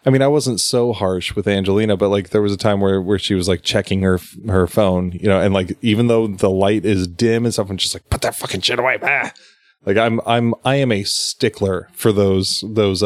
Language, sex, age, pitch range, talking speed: English, male, 20-39, 95-115 Hz, 245 wpm